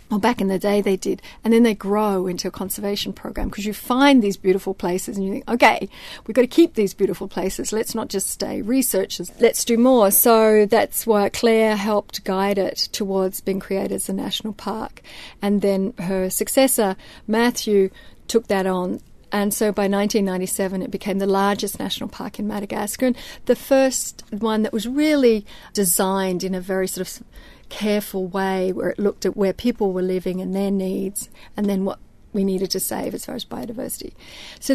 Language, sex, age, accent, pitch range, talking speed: English, female, 40-59, Australian, 190-220 Hz, 195 wpm